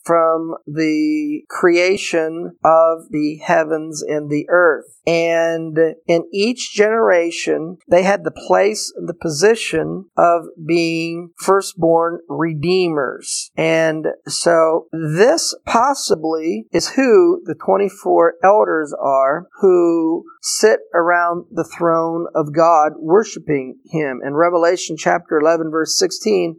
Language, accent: English, American